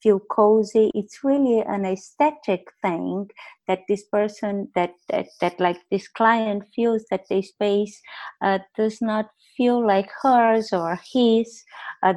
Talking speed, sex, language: 140 wpm, female, English